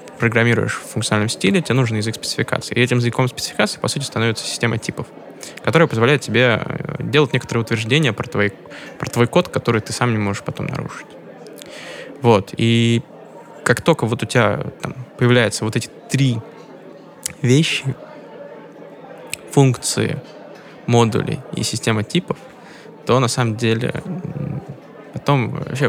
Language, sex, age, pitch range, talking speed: Russian, male, 20-39, 115-140 Hz, 130 wpm